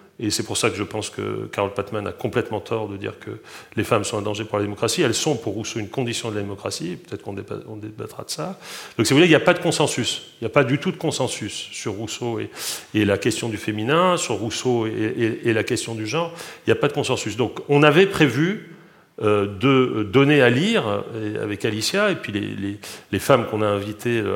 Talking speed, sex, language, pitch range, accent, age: 240 wpm, male, French, 105-150 Hz, French, 40-59